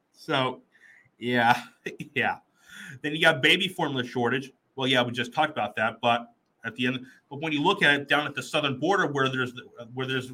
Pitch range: 125-155 Hz